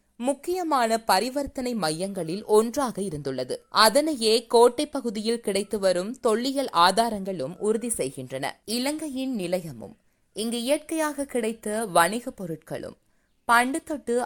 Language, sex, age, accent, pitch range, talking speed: Tamil, female, 20-39, native, 185-255 Hz, 95 wpm